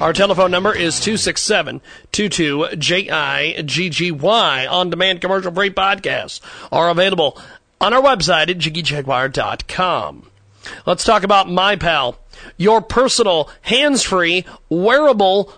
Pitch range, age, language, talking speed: 160-210 Hz, 40-59, English, 90 wpm